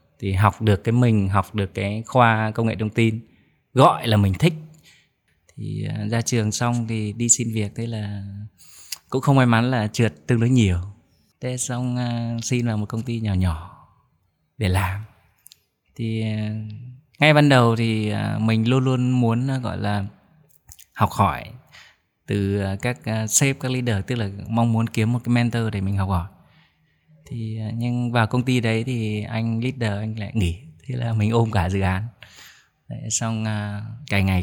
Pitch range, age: 100-120 Hz, 20-39